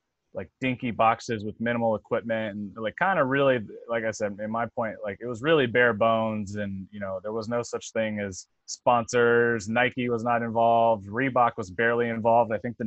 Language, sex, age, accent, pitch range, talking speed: English, male, 20-39, American, 100-120 Hz, 205 wpm